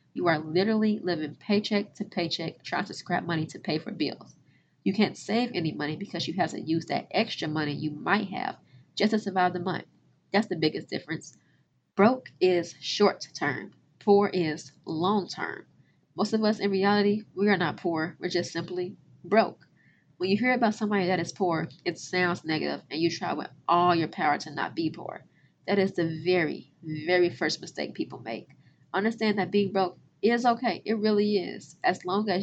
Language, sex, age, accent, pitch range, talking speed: English, female, 20-39, American, 165-205 Hz, 190 wpm